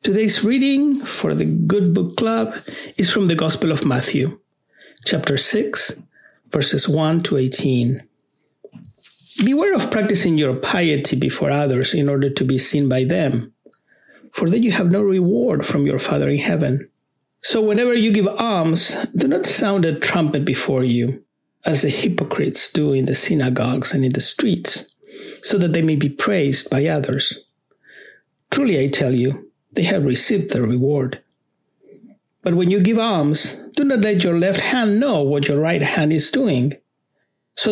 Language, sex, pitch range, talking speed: English, male, 140-210 Hz, 165 wpm